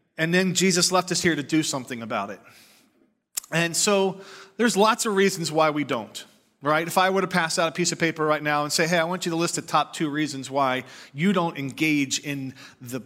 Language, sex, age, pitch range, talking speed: English, male, 40-59, 135-165 Hz, 235 wpm